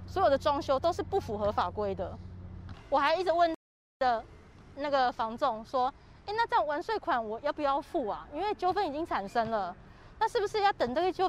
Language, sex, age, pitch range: Chinese, female, 20-39, 245-365 Hz